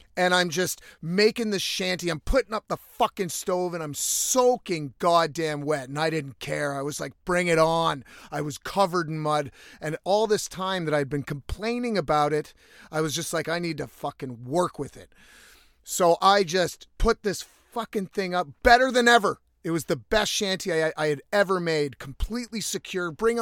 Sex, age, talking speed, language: male, 30-49, 195 wpm, English